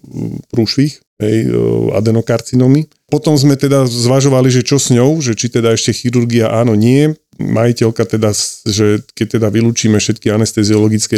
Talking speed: 135 wpm